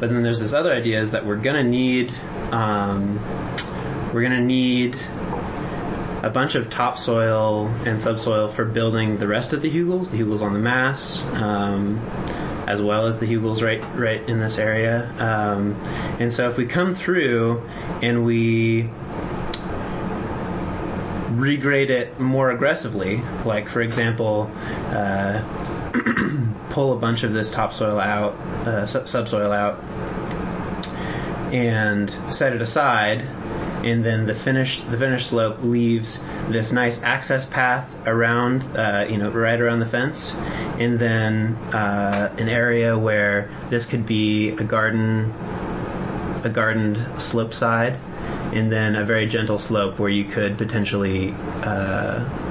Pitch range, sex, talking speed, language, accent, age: 105-120 Hz, male, 140 wpm, English, American, 20-39